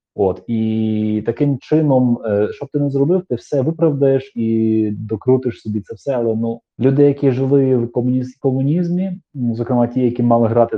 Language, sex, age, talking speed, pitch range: Ukrainian, male, 30-49, 165 wpm, 100-125 Hz